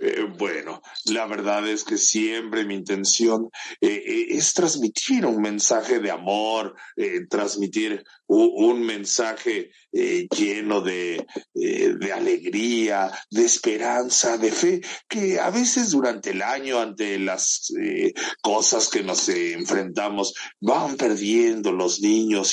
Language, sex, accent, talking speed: English, male, Mexican, 130 wpm